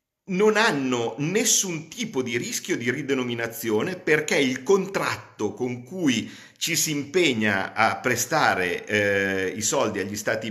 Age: 50-69